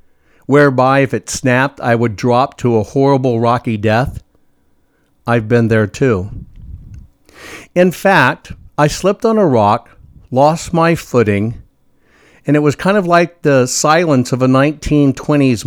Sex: male